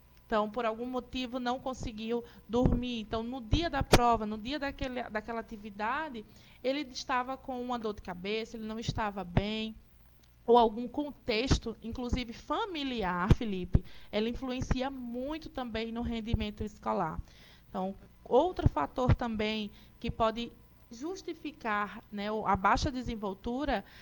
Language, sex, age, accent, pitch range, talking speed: Portuguese, female, 20-39, Brazilian, 215-280 Hz, 125 wpm